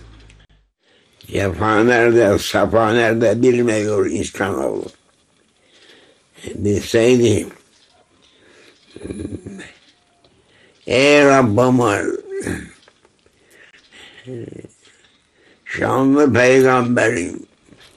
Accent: American